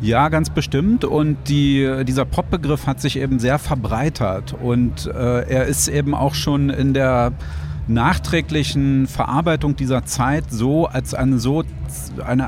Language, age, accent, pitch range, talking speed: German, 40-59, German, 125-145 Hz, 135 wpm